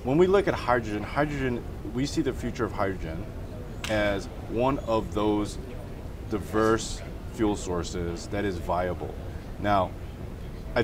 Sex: male